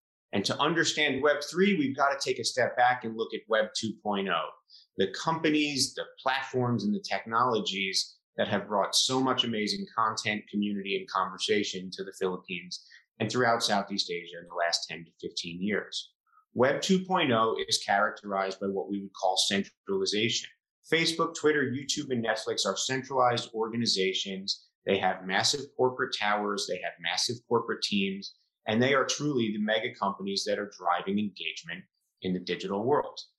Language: English